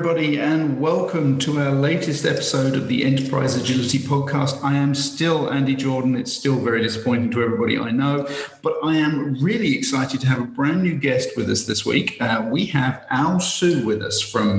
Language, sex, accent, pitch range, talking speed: English, male, British, 110-150 Hz, 200 wpm